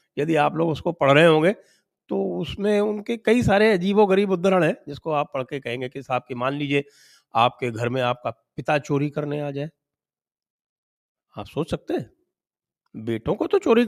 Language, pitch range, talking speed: English, 130-195 Hz, 175 wpm